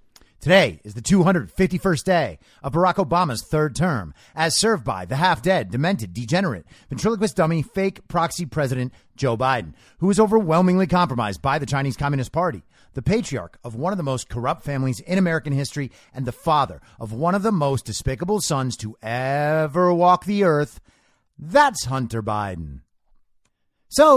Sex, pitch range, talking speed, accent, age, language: male, 120-180 Hz, 160 wpm, American, 30-49, English